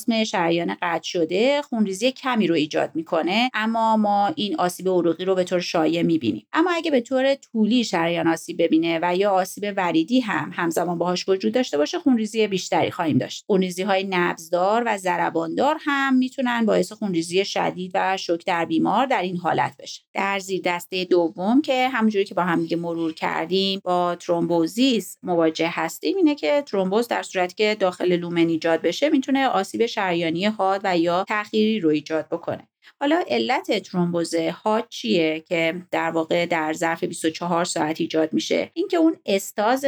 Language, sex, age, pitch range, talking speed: Persian, female, 30-49, 170-225 Hz, 165 wpm